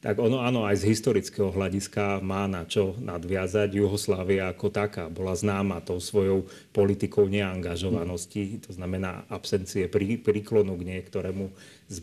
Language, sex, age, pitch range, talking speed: Slovak, male, 30-49, 95-105 Hz, 135 wpm